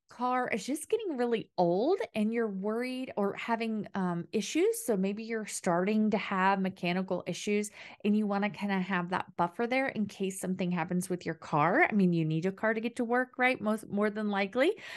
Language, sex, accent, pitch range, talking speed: English, female, American, 185-250 Hz, 215 wpm